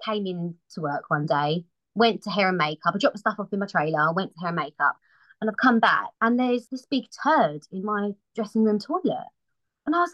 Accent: British